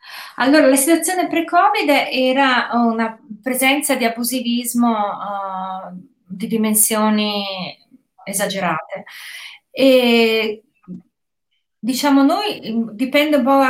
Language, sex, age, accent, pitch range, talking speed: Italian, female, 30-49, native, 220-260 Hz, 85 wpm